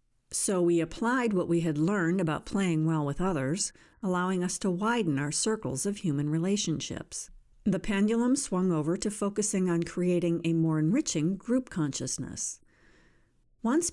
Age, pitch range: 50-69, 155-200 Hz